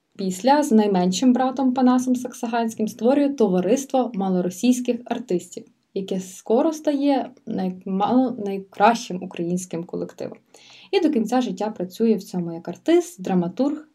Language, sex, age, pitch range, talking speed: Ukrainian, female, 20-39, 185-255 Hz, 110 wpm